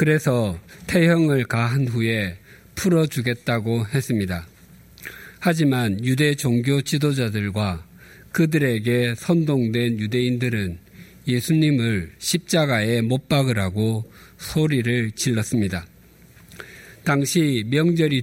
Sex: male